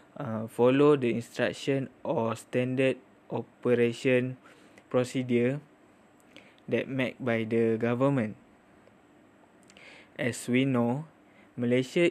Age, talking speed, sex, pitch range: 20-39, 85 wpm, male, 120-135 Hz